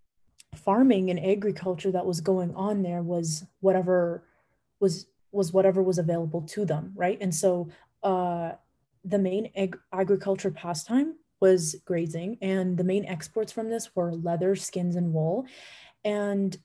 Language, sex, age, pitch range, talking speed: English, female, 20-39, 170-195 Hz, 140 wpm